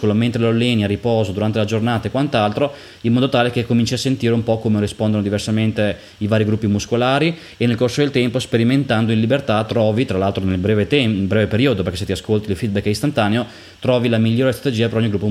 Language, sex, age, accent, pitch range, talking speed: Italian, male, 20-39, native, 100-120 Hz, 225 wpm